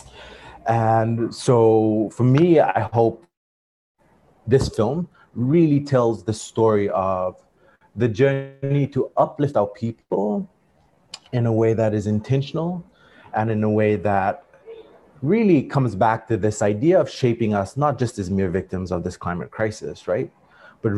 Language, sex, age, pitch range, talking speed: English, male, 30-49, 105-135 Hz, 145 wpm